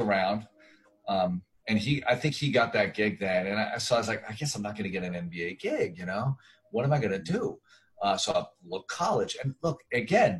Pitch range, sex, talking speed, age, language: 100-135 Hz, male, 240 wpm, 40-59, English